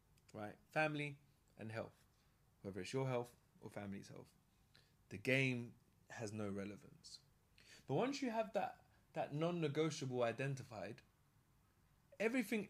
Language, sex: English, male